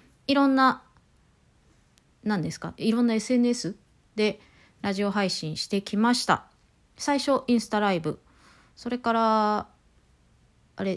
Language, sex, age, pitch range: Japanese, female, 30-49, 185-260 Hz